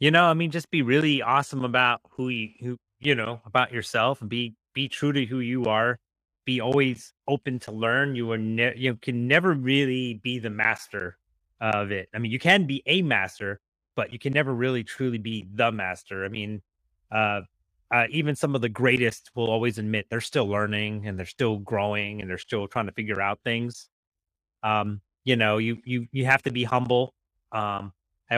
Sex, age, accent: male, 30-49, American